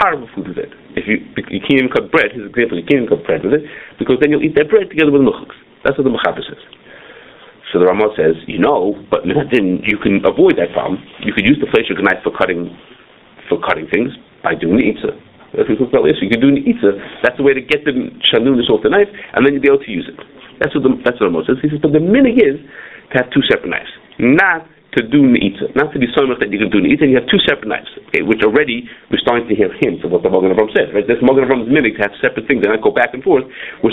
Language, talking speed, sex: English, 280 wpm, male